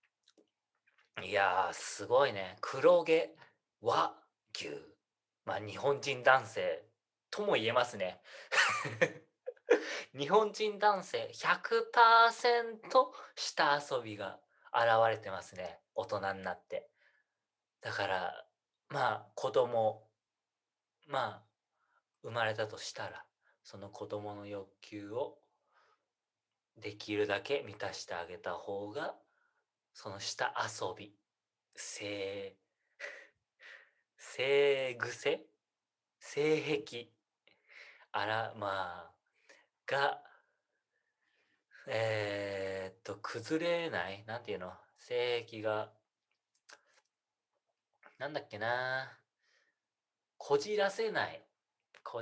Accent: native